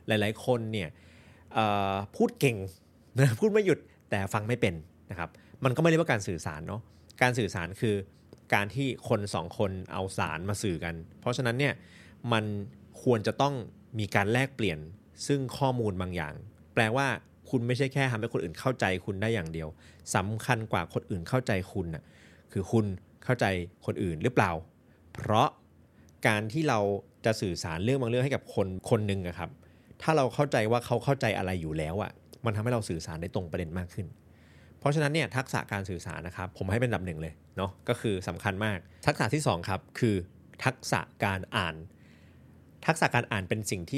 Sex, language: male, Thai